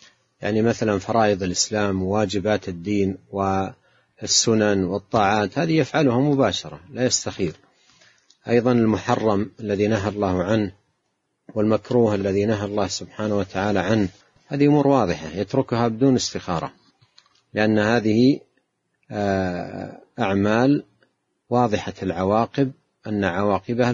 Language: Arabic